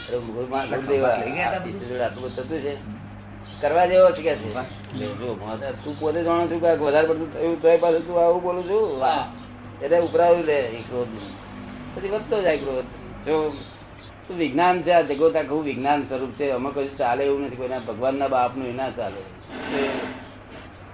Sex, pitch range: male, 110-150 Hz